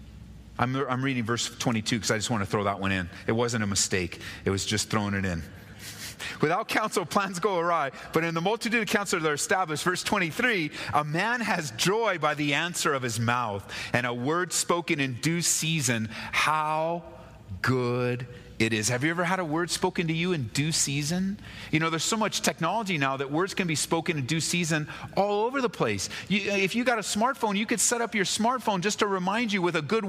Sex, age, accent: male, 40-59, American